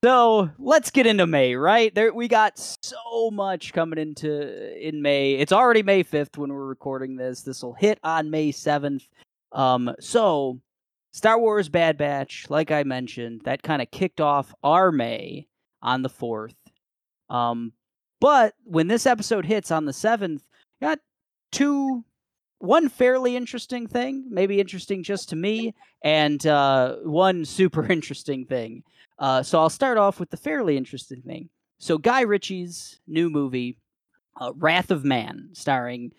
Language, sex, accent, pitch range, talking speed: English, male, American, 140-210 Hz, 155 wpm